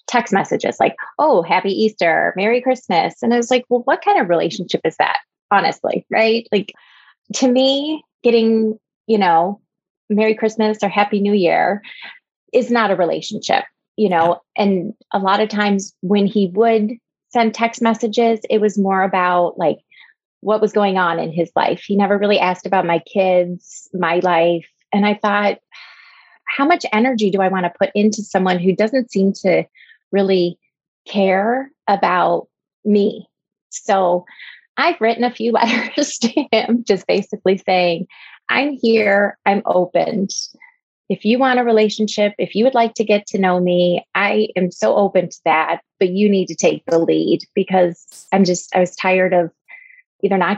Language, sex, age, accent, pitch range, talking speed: English, female, 20-39, American, 185-230 Hz, 170 wpm